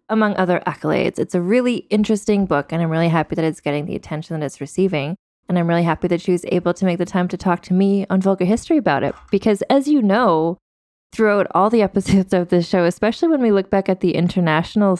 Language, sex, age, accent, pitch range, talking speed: English, female, 20-39, American, 170-200 Hz, 240 wpm